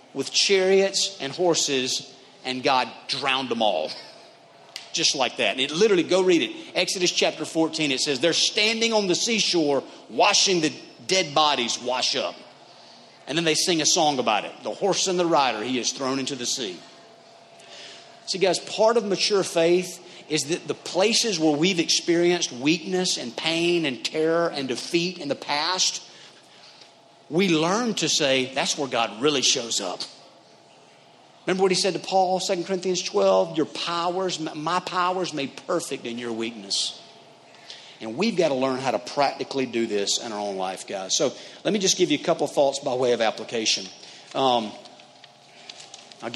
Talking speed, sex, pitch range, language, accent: 175 wpm, male, 135-180 Hz, English, American